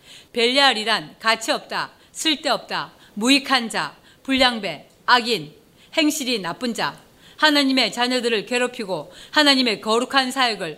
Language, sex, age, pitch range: Korean, female, 40-59, 220-275 Hz